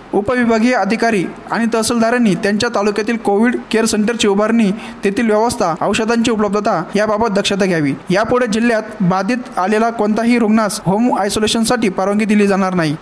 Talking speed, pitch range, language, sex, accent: 135 wpm, 205-235 Hz, Marathi, male, native